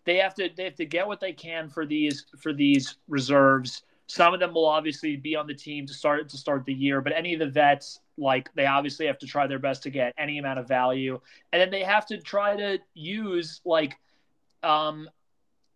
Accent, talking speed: American, 225 wpm